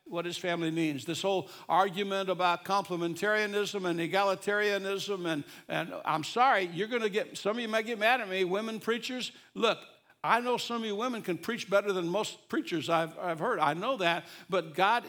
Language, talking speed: English, 195 wpm